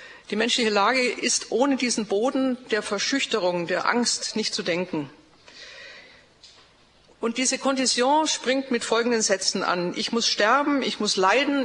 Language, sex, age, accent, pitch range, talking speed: German, female, 50-69, German, 200-255 Hz, 145 wpm